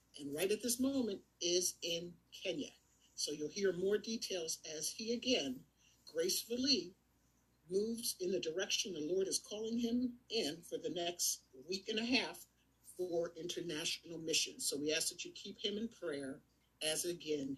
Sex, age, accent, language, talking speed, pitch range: male, 50-69, American, English, 165 wpm, 155-235 Hz